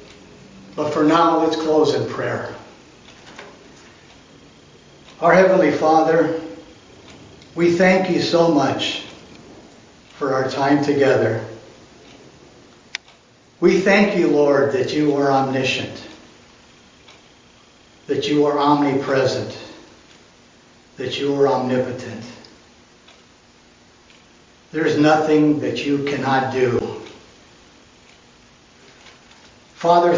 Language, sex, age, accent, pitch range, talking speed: English, male, 60-79, American, 130-160 Hz, 85 wpm